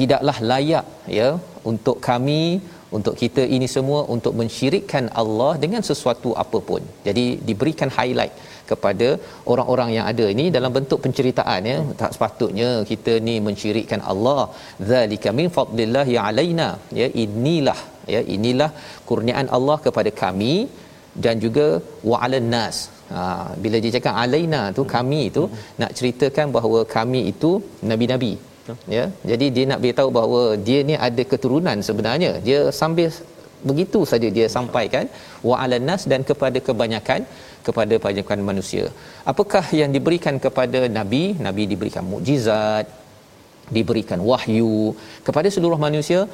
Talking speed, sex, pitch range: 130 wpm, male, 115-145 Hz